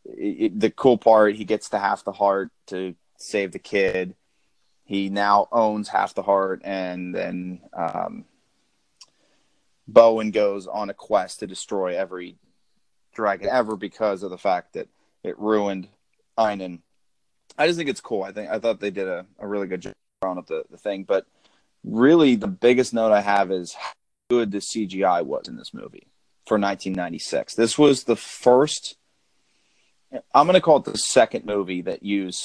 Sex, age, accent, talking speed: male, 30-49, American, 175 wpm